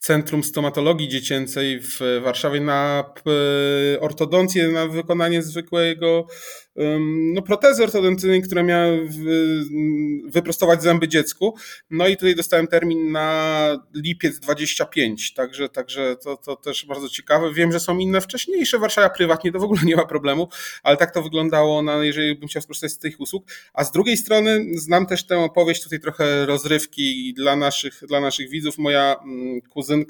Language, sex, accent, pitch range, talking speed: Polish, male, native, 145-170 Hz, 150 wpm